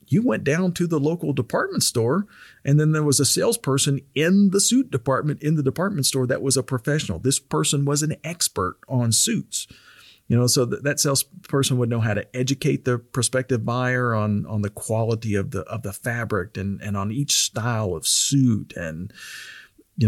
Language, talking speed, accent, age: English, 195 wpm, American, 40-59